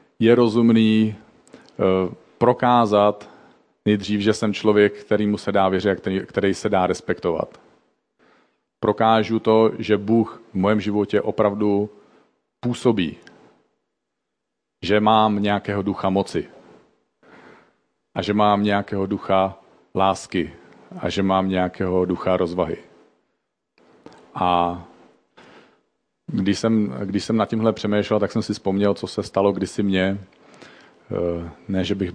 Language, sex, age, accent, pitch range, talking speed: Czech, male, 40-59, native, 95-105 Hz, 115 wpm